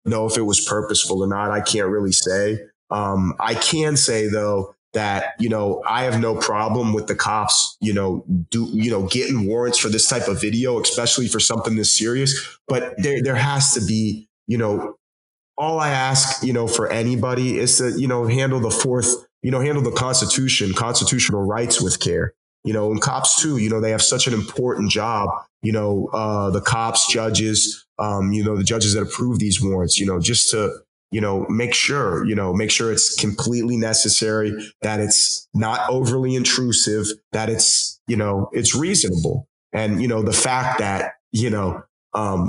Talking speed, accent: 195 wpm, American